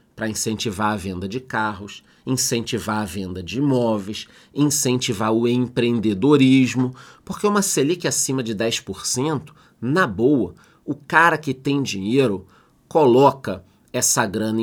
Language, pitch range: Portuguese, 110-140 Hz